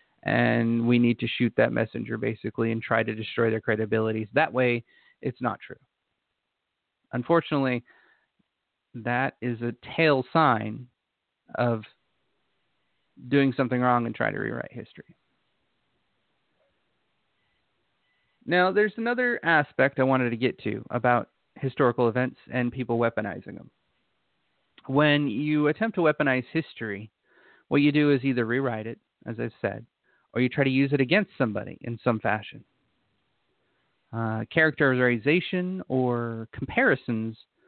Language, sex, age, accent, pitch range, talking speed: English, male, 30-49, American, 115-140 Hz, 130 wpm